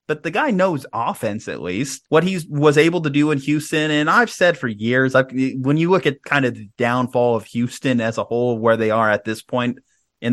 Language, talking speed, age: English, 230 wpm, 30-49